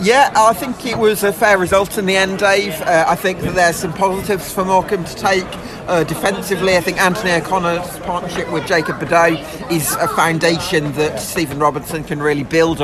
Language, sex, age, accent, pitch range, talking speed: English, male, 40-59, British, 150-185 Hz, 195 wpm